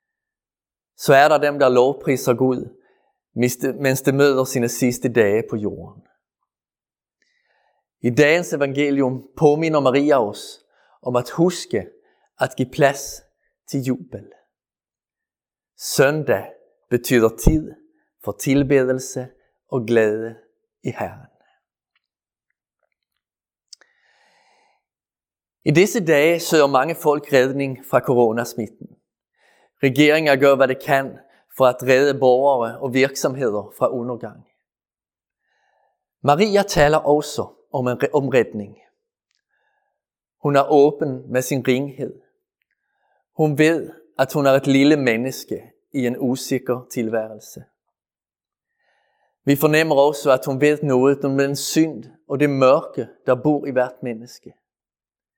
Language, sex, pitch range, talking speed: Danish, male, 130-155 Hz, 115 wpm